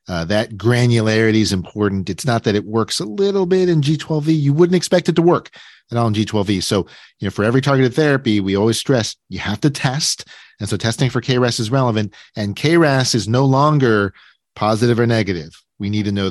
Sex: male